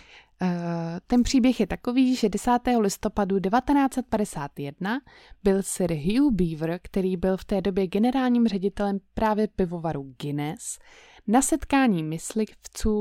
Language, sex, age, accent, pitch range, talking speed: Czech, female, 20-39, native, 180-240 Hz, 115 wpm